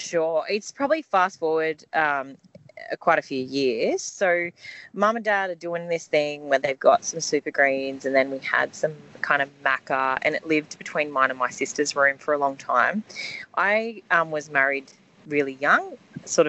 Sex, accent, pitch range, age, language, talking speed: female, Australian, 140-195 Hz, 20-39, English, 190 wpm